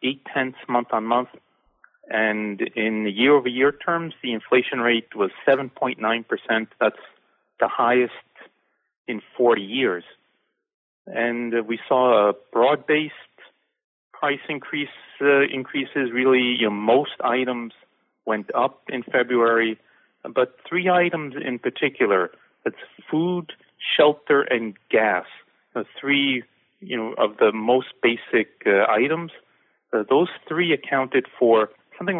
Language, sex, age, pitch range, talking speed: English, male, 40-59, 110-145 Hz, 125 wpm